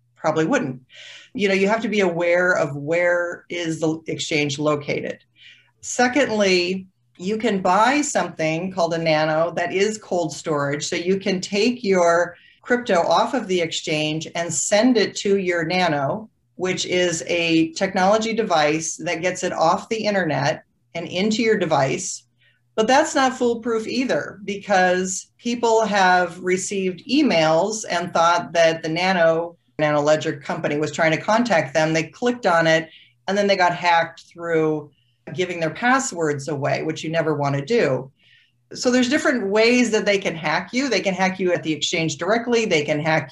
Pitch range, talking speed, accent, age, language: 160-215 Hz, 170 wpm, American, 40-59, English